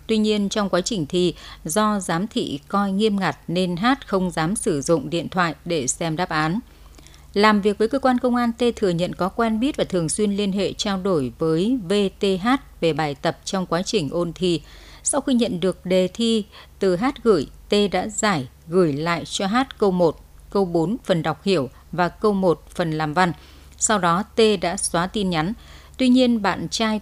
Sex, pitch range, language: female, 170-215 Hz, Vietnamese